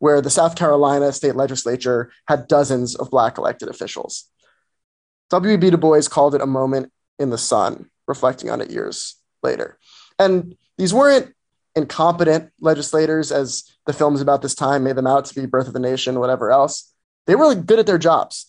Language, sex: English, male